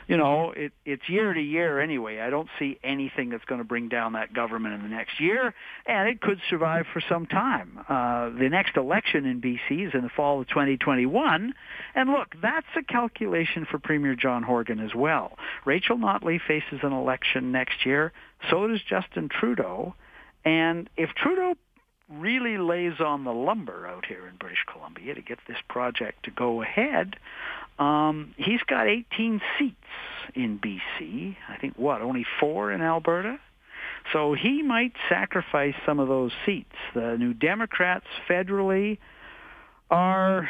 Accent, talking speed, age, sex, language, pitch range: American, 165 wpm, 60-79, male, English, 130-195 Hz